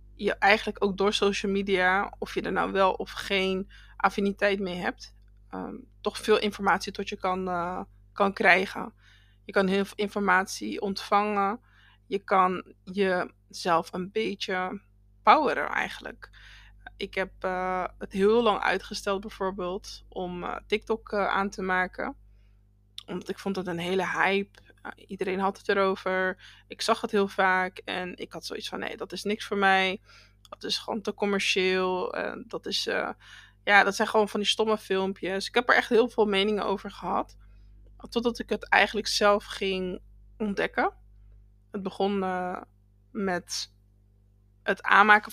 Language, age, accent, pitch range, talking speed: Dutch, 20-39, Dutch, 175-205 Hz, 160 wpm